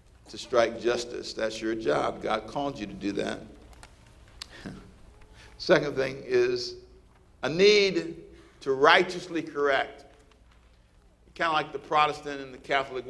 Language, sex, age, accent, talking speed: English, male, 50-69, American, 125 wpm